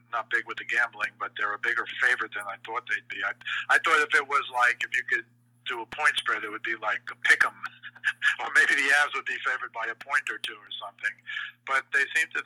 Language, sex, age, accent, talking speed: English, male, 50-69, American, 255 wpm